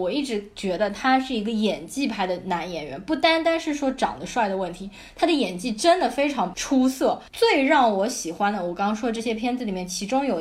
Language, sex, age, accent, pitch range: Chinese, female, 20-39, native, 200-275 Hz